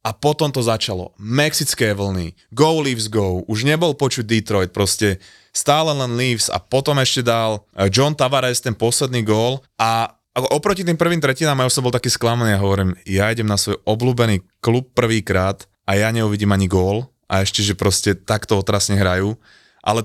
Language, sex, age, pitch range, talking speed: Slovak, male, 20-39, 105-135 Hz, 175 wpm